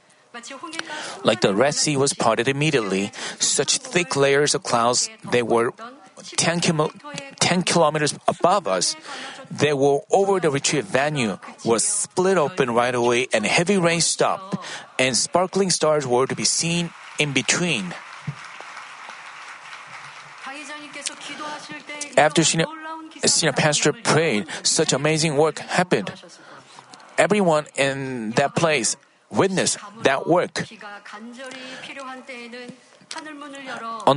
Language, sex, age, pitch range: Korean, male, 40-59, 140-205 Hz